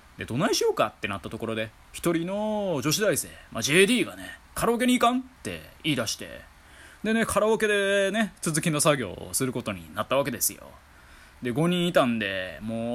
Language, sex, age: Japanese, male, 20-39